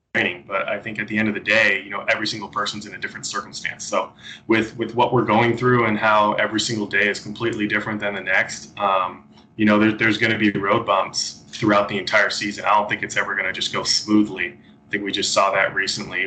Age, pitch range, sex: 20-39, 100-110 Hz, male